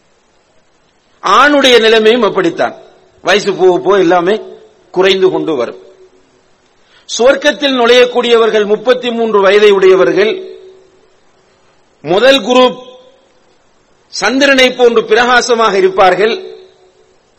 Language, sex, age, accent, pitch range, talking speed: English, male, 50-69, Indian, 215-335 Hz, 80 wpm